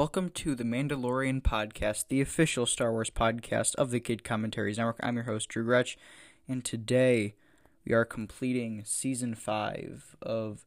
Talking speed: 155 wpm